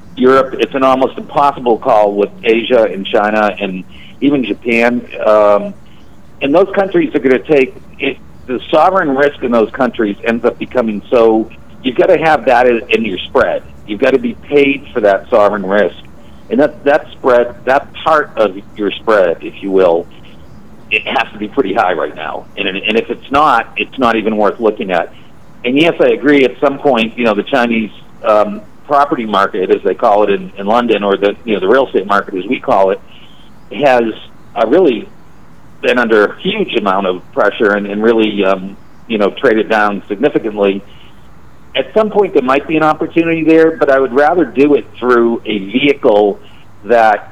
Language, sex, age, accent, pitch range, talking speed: English, male, 50-69, American, 105-140 Hz, 190 wpm